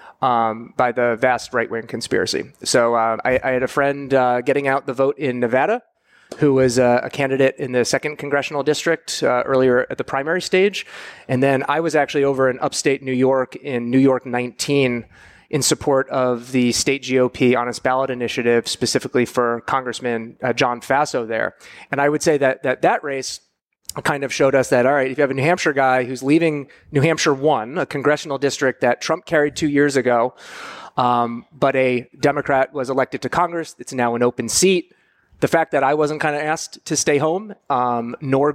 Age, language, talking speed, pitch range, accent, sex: 30-49, English, 200 wpm, 125-150 Hz, American, male